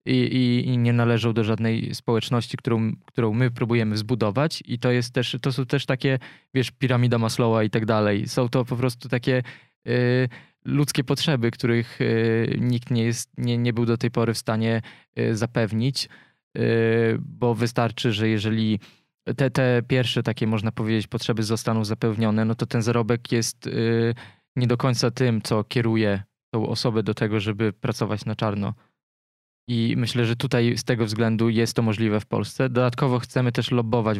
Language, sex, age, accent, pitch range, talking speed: Polish, male, 20-39, native, 110-125 Hz, 160 wpm